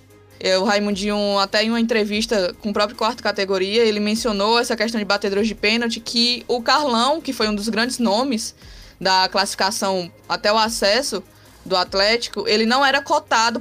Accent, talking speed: Brazilian, 170 wpm